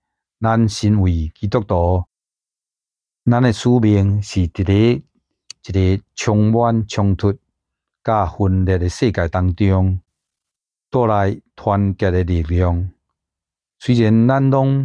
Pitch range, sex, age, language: 90-110 Hz, male, 60-79, Chinese